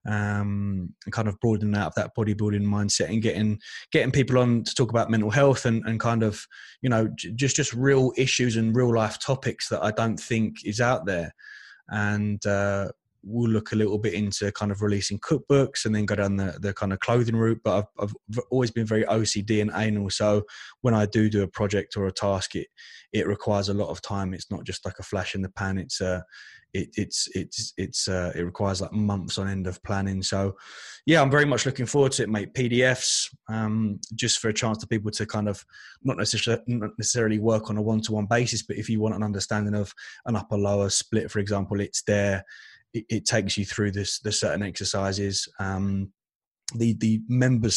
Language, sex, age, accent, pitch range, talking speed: English, male, 20-39, British, 100-115 Hz, 215 wpm